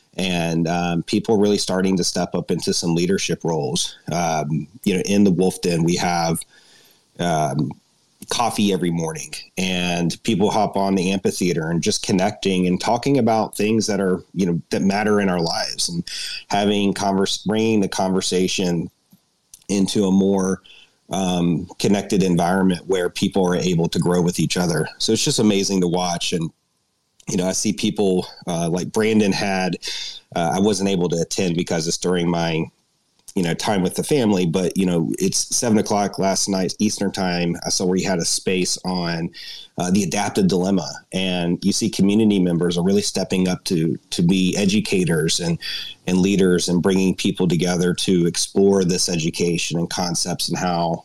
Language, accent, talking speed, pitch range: English, American, 175 wpm, 85-100 Hz